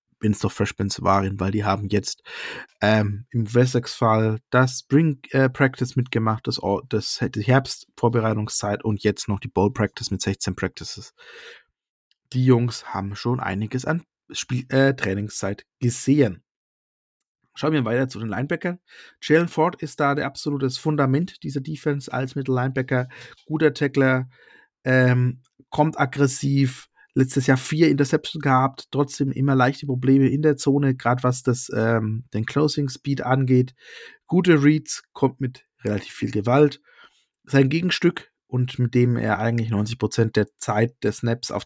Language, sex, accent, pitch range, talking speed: German, male, German, 115-140 Hz, 145 wpm